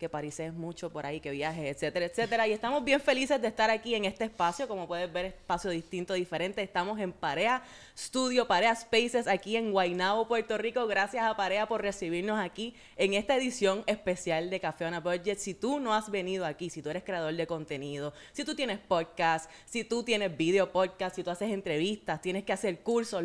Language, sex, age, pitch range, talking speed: Spanish, female, 20-39, 170-220 Hz, 205 wpm